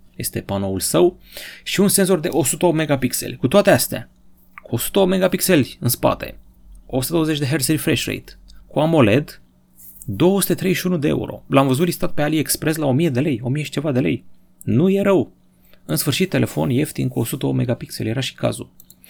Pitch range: 105-160 Hz